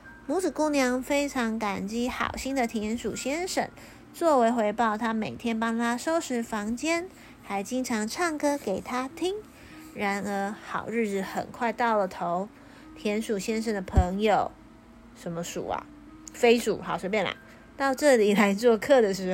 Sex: female